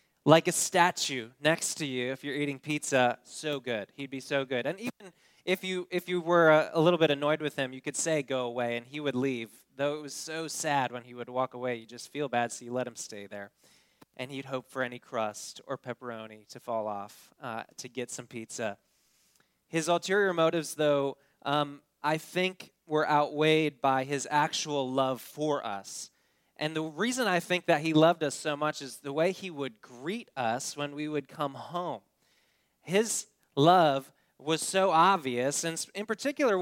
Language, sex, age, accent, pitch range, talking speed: English, male, 20-39, American, 130-165 Hz, 200 wpm